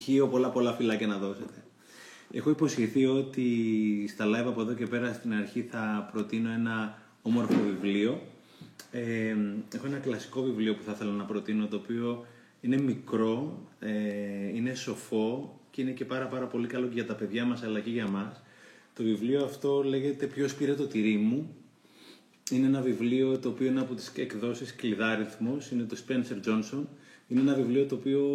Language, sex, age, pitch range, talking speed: Greek, male, 30-49, 110-130 Hz, 175 wpm